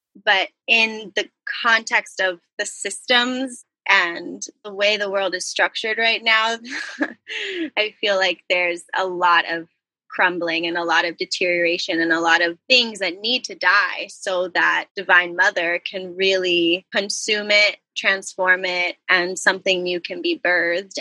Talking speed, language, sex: 155 wpm, English, female